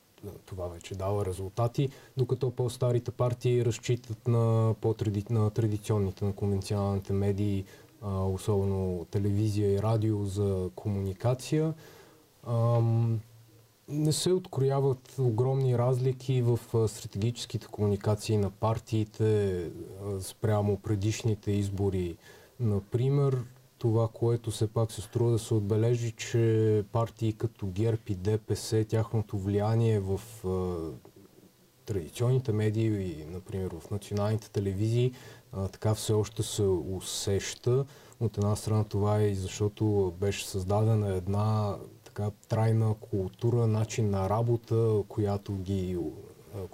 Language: Bulgarian